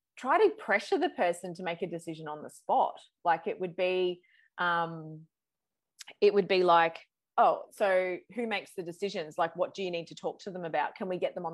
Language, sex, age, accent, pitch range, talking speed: English, female, 20-39, Australian, 170-245 Hz, 220 wpm